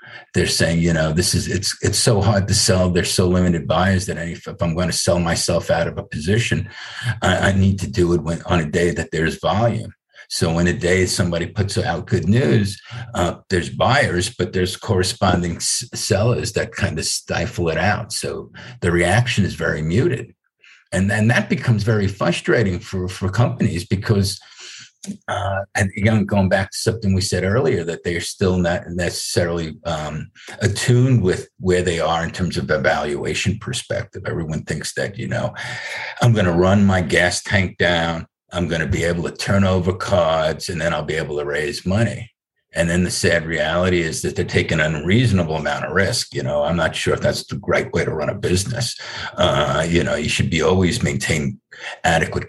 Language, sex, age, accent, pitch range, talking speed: English, male, 50-69, American, 90-105 Hz, 200 wpm